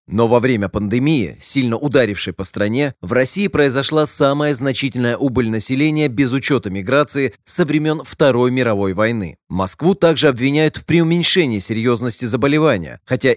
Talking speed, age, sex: 140 wpm, 30-49, male